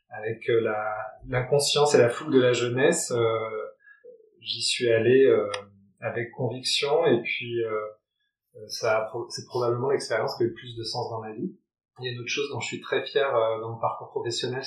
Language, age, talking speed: French, 30-49, 210 wpm